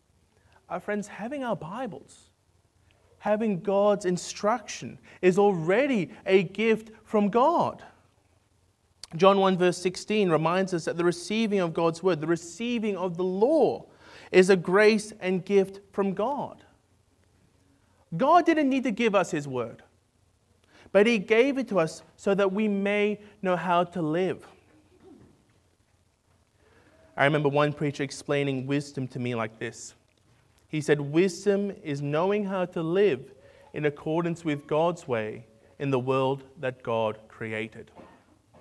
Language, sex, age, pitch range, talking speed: English, male, 30-49, 120-200 Hz, 140 wpm